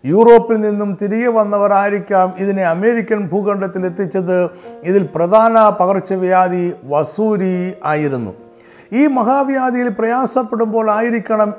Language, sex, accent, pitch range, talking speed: Malayalam, male, native, 185-225 Hz, 85 wpm